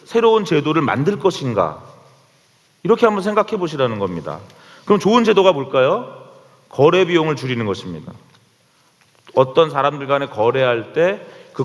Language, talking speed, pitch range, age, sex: English, 115 wpm, 130-195 Hz, 30-49, male